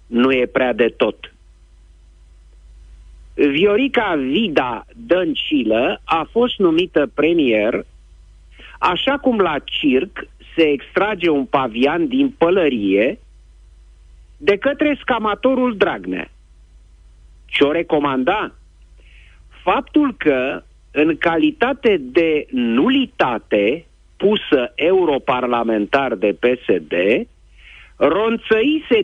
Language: Romanian